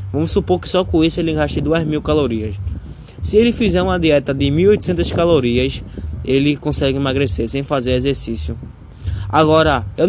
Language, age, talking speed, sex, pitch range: Portuguese, 20-39, 155 wpm, male, 120-155 Hz